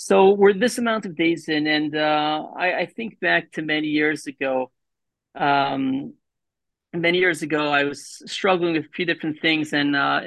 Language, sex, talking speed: English, male, 180 wpm